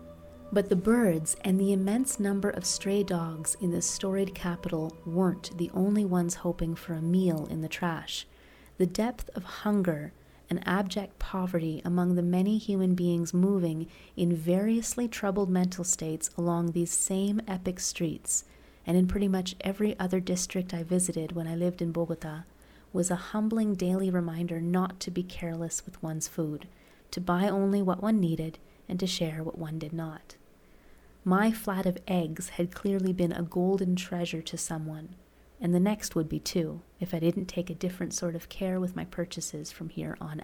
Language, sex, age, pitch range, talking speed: English, female, 30-49, 165-195 Hz, 180 wpm